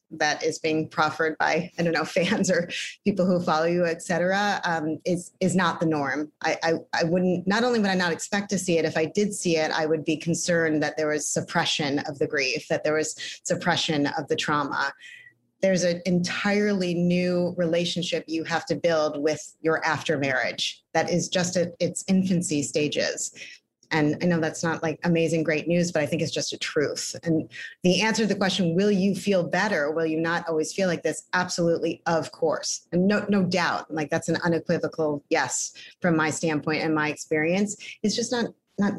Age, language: 30-49, English